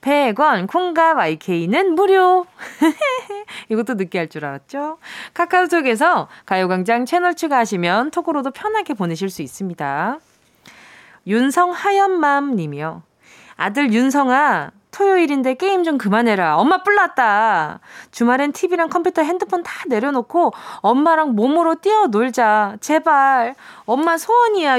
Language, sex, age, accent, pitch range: Korean, female, 20-39, native, 210-355 Hz